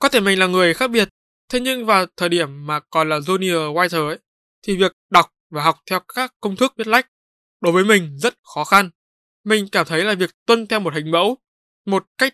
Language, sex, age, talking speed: Vietnamese, male, 20-39, 230 wpm